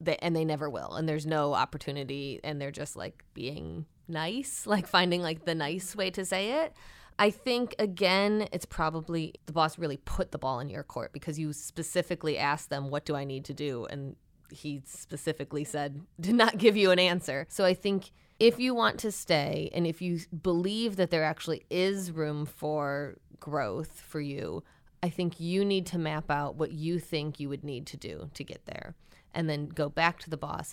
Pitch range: 150-180 Hz